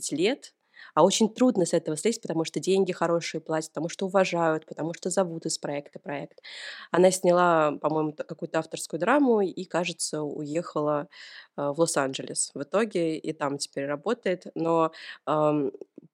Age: 20-39